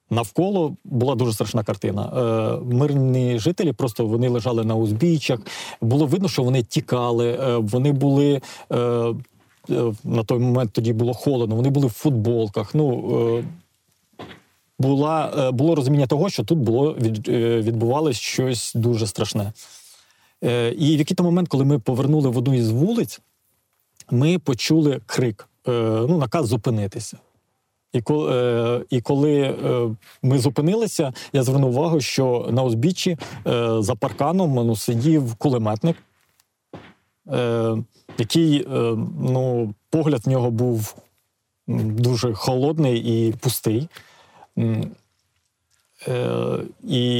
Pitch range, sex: 115-145 Hz, male